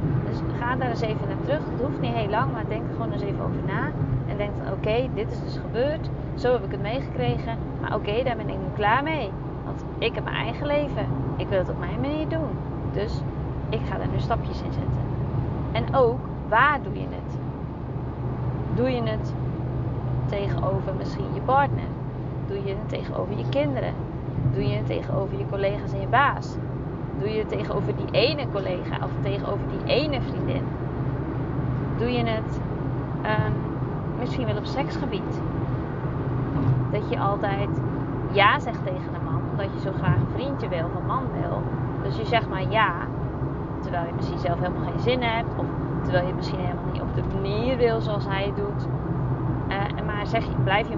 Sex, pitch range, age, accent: female, 130-145 Hz, 20-39, Dutch